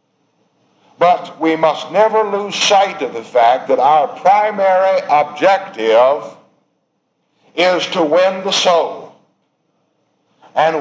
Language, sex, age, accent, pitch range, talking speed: English, male, 60-79, American, 155-220 Hz, 105 wpm